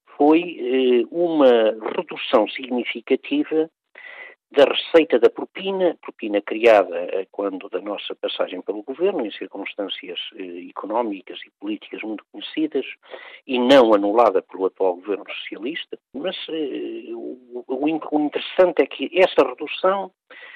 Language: Portuguese